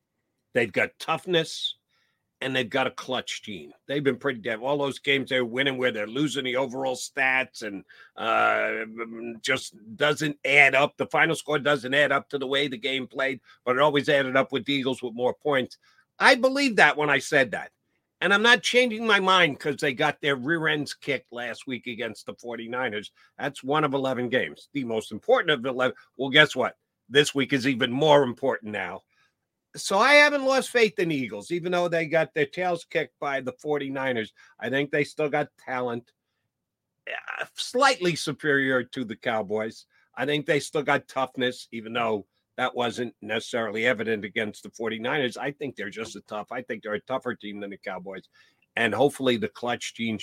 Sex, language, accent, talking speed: male, English, American, 195 wpm